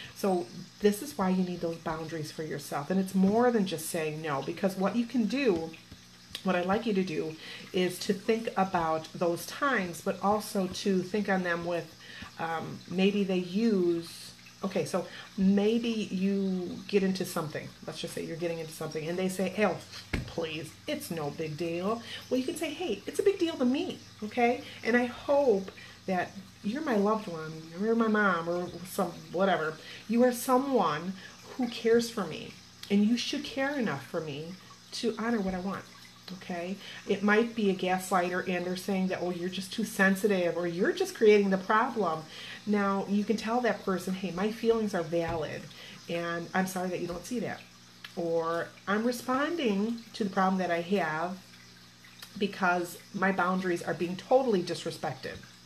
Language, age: English, 30-49